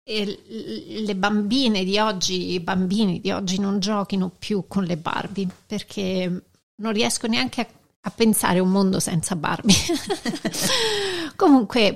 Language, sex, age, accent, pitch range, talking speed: Italian, female, 40-59, native, 190-235 Hz, 140 wpm